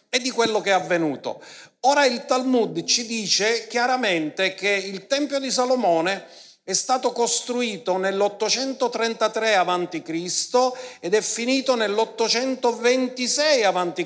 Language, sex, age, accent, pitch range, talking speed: Italian, male, 50-69, native, 190-250 Hz, 120 wpm